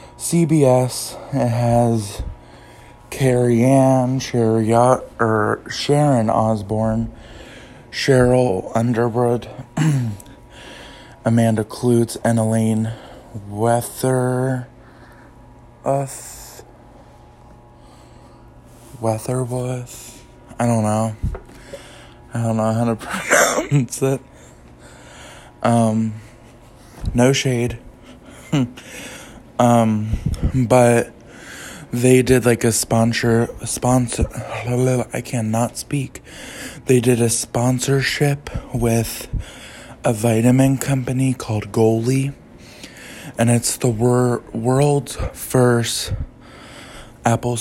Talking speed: 75 wpm